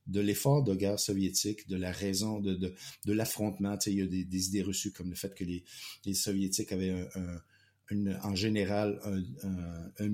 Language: French